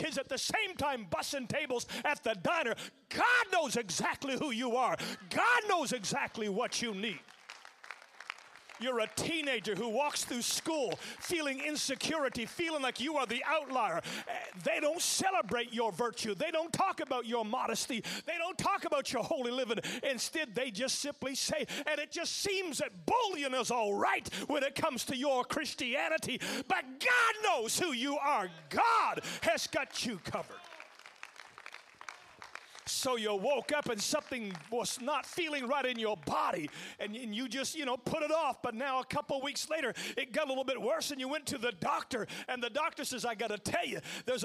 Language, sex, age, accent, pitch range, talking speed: English, male, 40-59, American, 240-310 Hz, 180 wpm